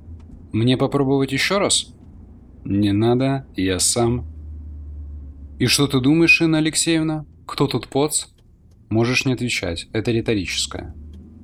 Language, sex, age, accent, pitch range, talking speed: Russian, male, 20-39, native, 85-130 Hz, 115 wpm